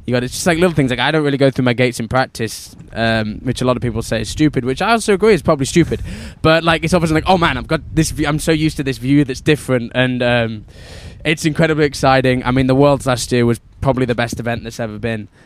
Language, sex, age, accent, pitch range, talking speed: English, male, 10-29, British, 115-140 Hz, 280 wpm